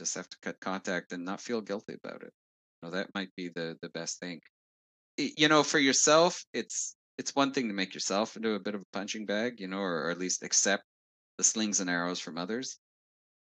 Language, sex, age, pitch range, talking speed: English, male, 30-49, 80-115 Hz, 230 wpm